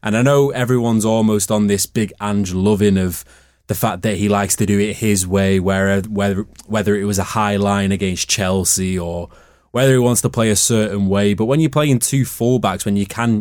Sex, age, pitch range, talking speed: male, 20-39, 95-110 Hz, 215 wpm